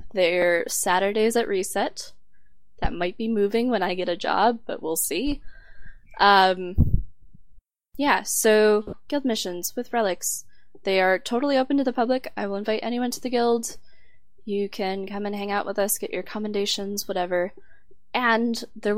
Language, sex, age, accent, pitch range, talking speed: English, female, 10-29, American, 185-235 Hz, 160 wpm